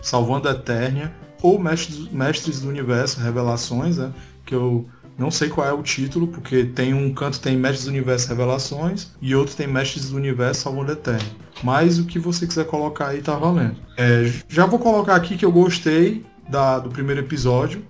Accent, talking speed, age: Brazilian, 190 wpm, 20-39